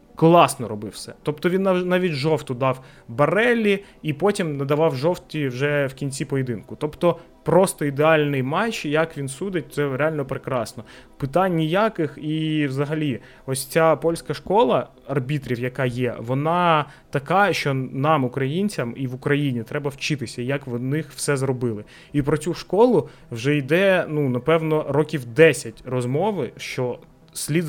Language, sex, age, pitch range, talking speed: Ukrainian, male, 20-39, 130-165 Hz, 140 wpm